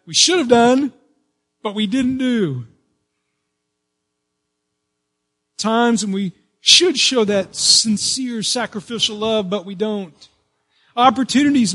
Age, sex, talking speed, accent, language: 40-59, male, 105 wpm, American, English